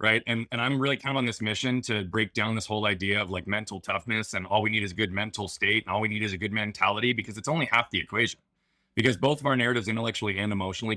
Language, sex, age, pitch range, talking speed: English, male, 30-49, 100-125 Hz, 280 wpm